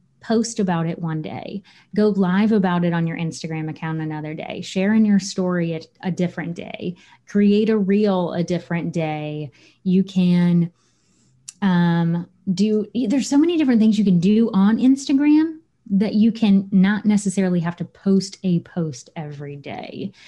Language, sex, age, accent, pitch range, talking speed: English, female, 30-49, American, 170-215 Hz, 165 wpm